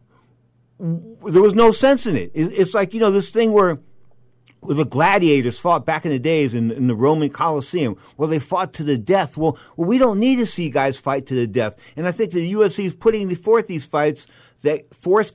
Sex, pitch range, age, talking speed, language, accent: male, 125-165 Hz, 50-69, 220 wpm, English, American